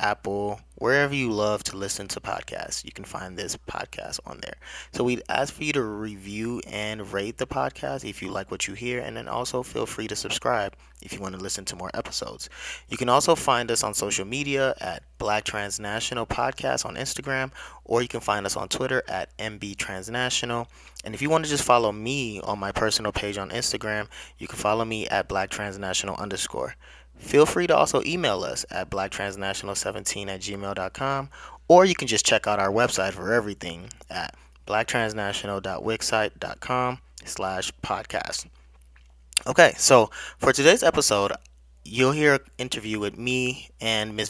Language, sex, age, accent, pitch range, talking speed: English, male, 20-39, American, 100-125 Hz, 175 wpm